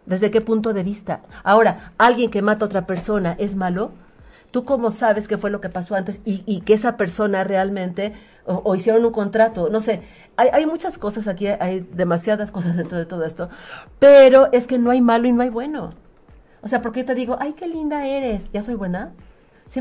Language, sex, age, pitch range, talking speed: Spanish, female, 40-59, 190-240 Hz, 220 wpm